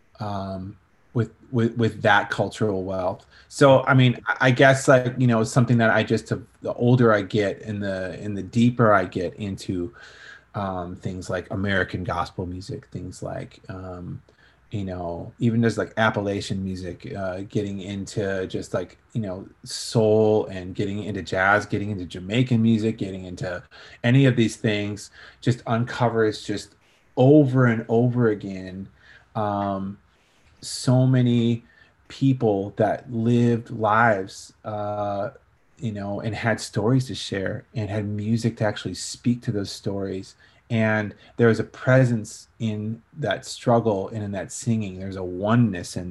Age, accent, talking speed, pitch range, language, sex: 30-49, American, 150 wpm, 100-120 Hz, English, male